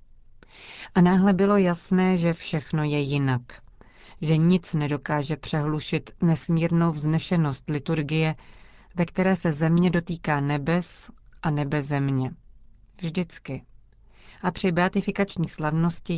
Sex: female